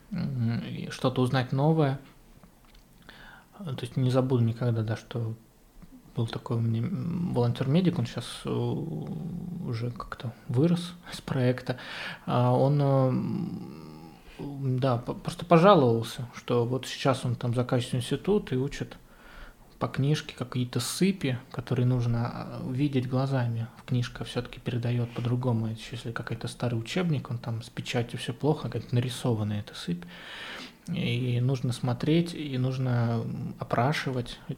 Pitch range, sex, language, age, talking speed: 120-140 Hz, male, Russian, 20-39, 115 wpm